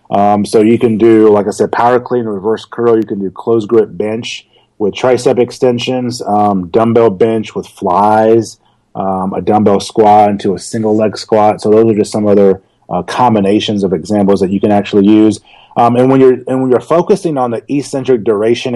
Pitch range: 105-125 Hz